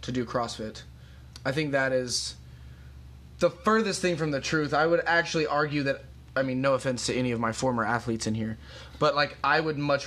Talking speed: 210 wpm